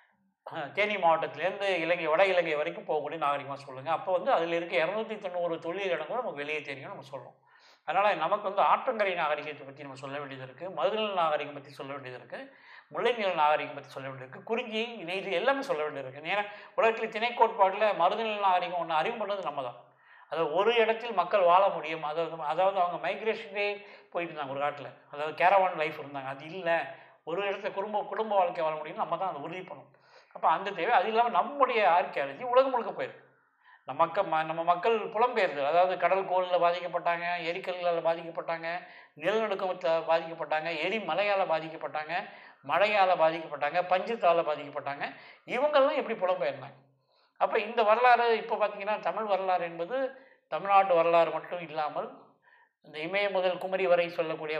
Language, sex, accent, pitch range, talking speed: English, male, Indian, 155-205 Hz, 130 wpm